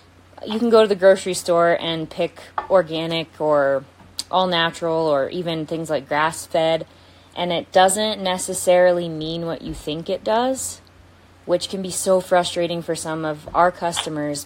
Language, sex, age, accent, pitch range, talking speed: English, female, 20-39, American, 155-185 Hz, 160 wpm